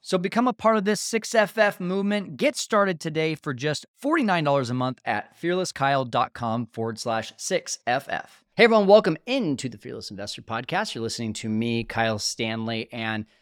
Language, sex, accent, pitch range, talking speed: English, male, American, 115-155 Hz, 160 wpm